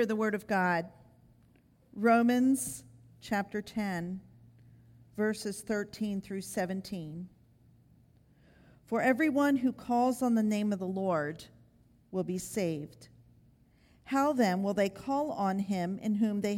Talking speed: 125 wpm